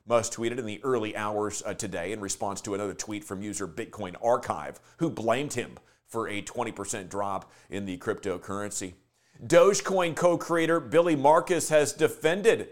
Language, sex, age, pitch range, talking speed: English, male, 40-59, 115-150 Hz, 150 wpm